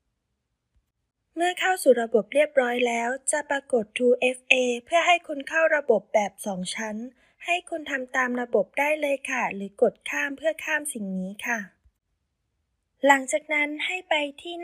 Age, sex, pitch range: 20-39, female, 240-310 Hz